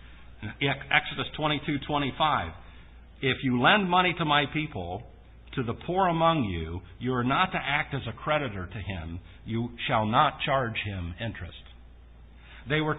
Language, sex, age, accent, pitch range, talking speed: English, male, 50-69, American, 95-150 Hz, 150 wpm